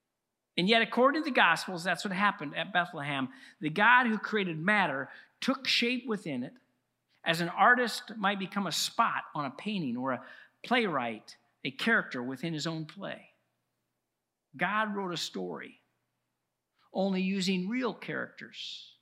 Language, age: English, 50-69